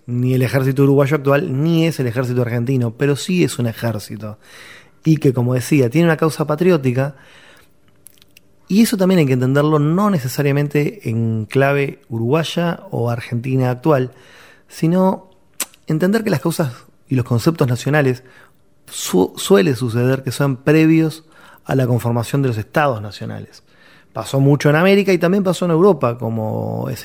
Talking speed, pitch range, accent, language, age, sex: 155 wpm, 125-160 Hz, Argentinian, Spanish, 30-49, male